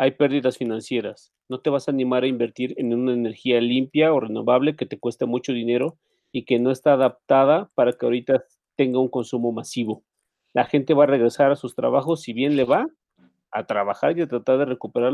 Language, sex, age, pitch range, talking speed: Spanish, male, 40-59, 125-165 Hz, 205 wpm